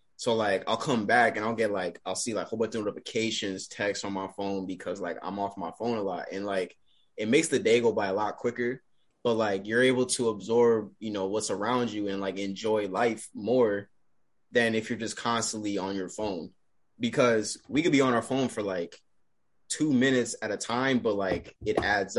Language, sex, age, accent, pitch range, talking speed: English, male, 20-39, American, 100-125 Hz, 220 wpm